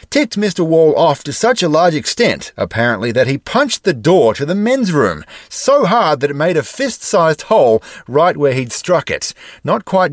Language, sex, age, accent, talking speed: English, male, 30-49, Australian, 200 wpm